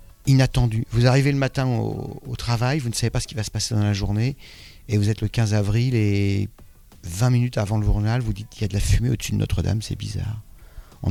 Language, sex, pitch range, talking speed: French, male, 95-110 Hz, 255 wpm